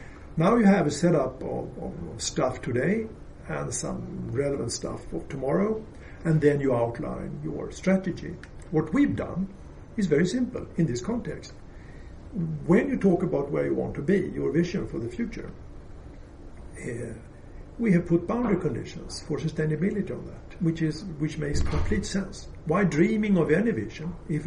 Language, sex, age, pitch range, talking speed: English, male, 60-79, 125-175 Hz, 160 wpm